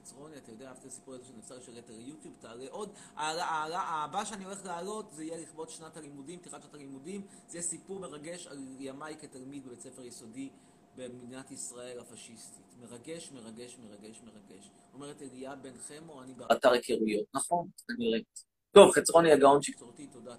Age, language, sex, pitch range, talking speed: 30-49, Hebrew, male, 120-165 Hz, 160 wpm